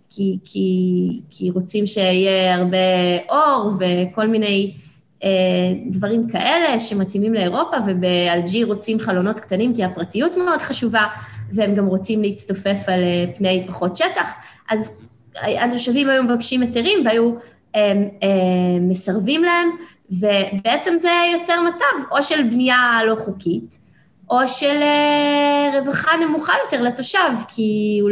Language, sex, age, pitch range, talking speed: Hebrew, female, 20-39, 195-260 Hz, 130 wpm